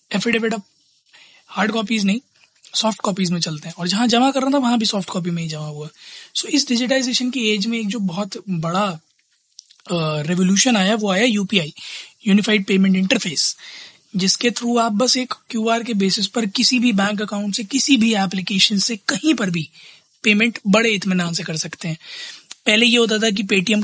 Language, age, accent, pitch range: Hindi, 20-39, native, 185-225 Hz